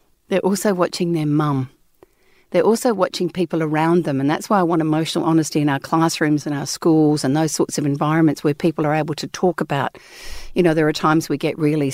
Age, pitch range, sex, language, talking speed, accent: 50-69, 145-170 Hz, female, English, 220 wpm, Australian